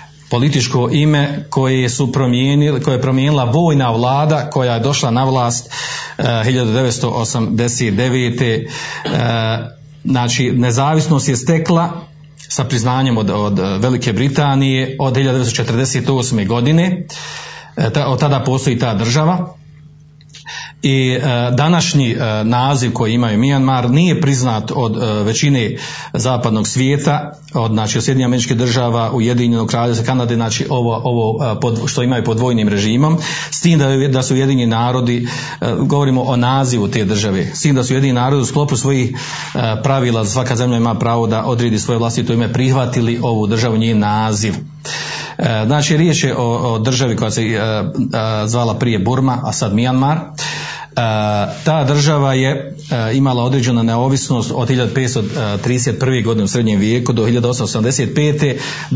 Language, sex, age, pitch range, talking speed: Croatian, male, 40-59, 115-140 Hz, 140 wpm